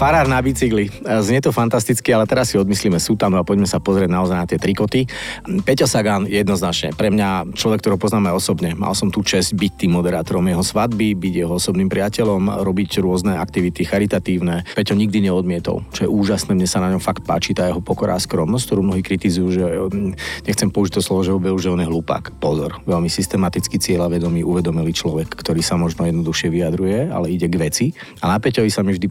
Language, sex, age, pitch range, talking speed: Slovak, male, 40-59, 90-105 Hz, 200 wpm